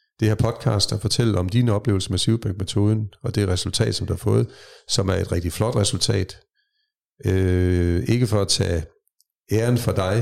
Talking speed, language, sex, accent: 180 wpm, Danish, male, native